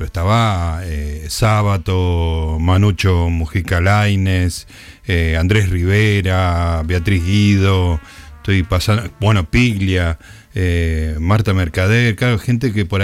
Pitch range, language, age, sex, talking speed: 90-120 Hz, Spanish, 50-69, male, 95 wpm